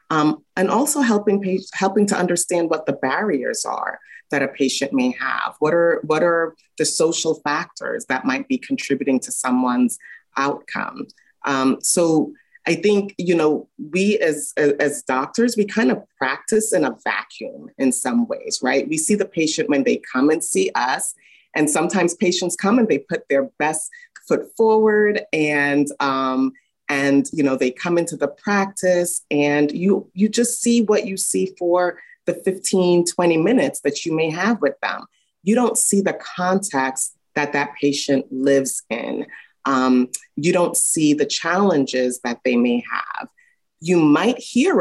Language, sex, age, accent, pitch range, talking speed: English, female, 30-49, American, 140-205 Hz, 170 wpm